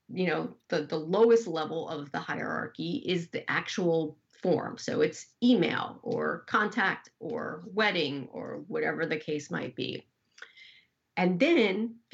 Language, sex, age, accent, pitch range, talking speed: English, female, 40-59, American, 165-225 Hz, 145 wpm